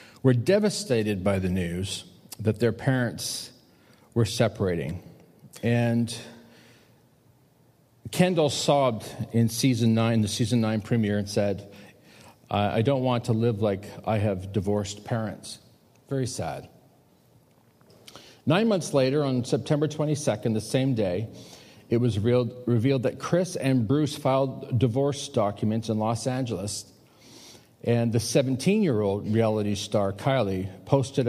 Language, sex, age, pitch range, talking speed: English, male, 40-59, 110-140 Hz, 125 wpm